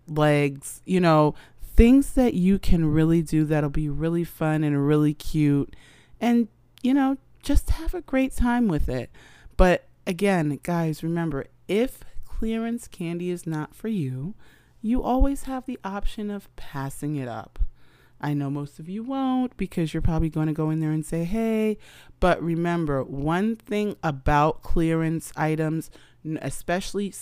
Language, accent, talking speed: English, American, 155 wpm